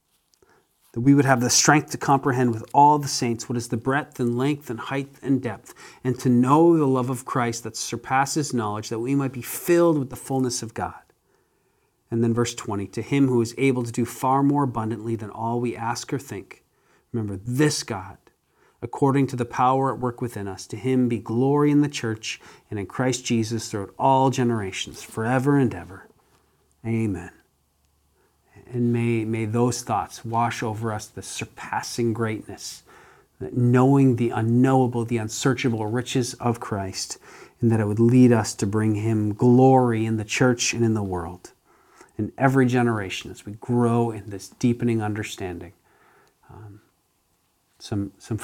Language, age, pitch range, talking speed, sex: English, 40-59, 110-130 Hz, 175 wpm, male